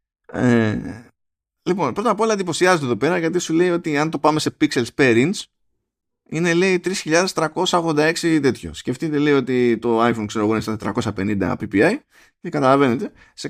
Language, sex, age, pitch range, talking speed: Greek, male, 20-39, 115-175 Hz, 155 wpm